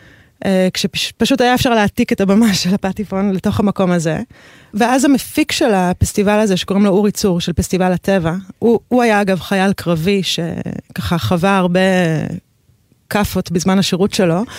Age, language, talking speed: 30-49, Hebrew, 150 wpm